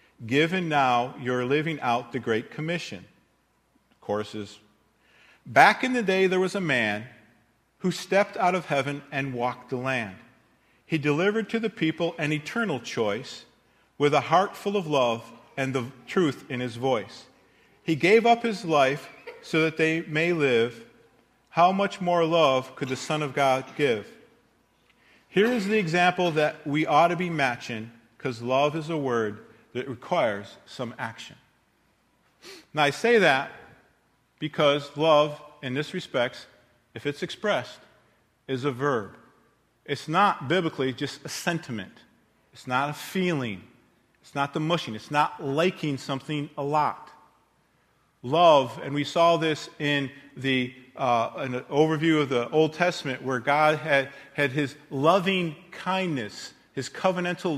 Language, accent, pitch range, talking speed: English, American, 130-170 Hz, 150 wpm